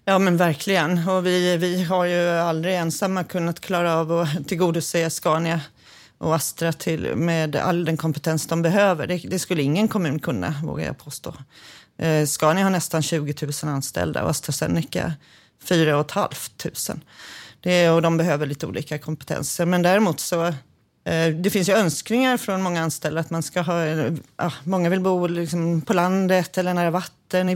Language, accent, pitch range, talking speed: Swedish, native, 160-180 Hz, 170 wpm